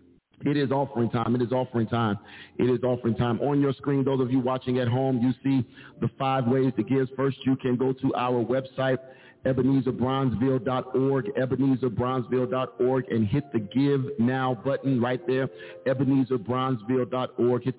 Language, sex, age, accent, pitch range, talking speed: English, male, 50-69, American, 120-135 Hz, 160 wpm